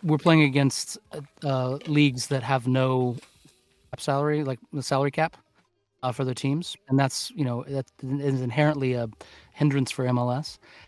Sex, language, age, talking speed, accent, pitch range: male, English, 30-49, 155 wpm, American, 130-150 Hz